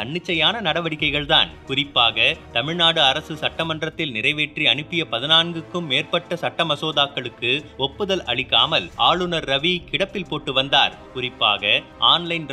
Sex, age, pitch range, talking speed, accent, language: male, 30-49, 150-180 Hz, 95 wpm, native, Tamil